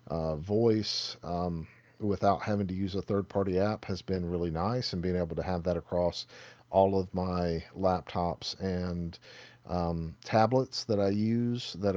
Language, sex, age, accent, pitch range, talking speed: English, male, 40-59, American, 90-115 Hz, 165 wpm